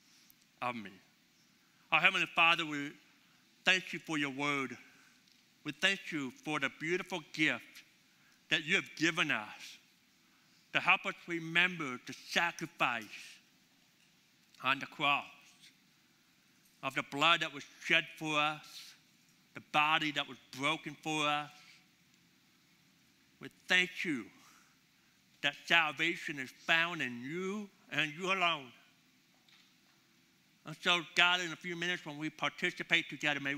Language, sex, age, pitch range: English, male, 60-79, 145-170 Hz